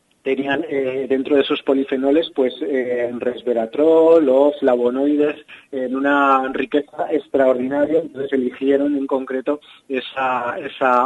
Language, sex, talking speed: Spanish, male, 120 wpm